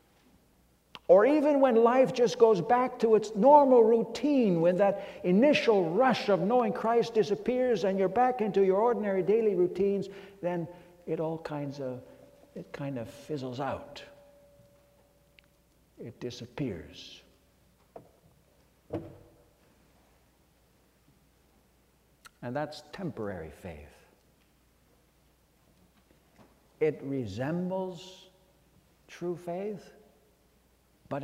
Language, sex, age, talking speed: English, male, 60-79, 90 wpm